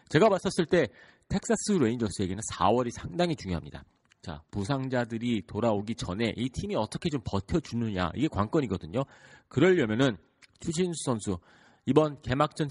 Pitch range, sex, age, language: 95-140 Hz, male, 40-59, Korean